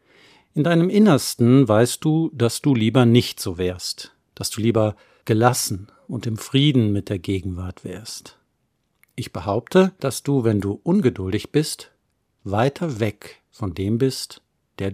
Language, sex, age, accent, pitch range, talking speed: German, male, 50-69, German, 110-135 Hz, 145 wpm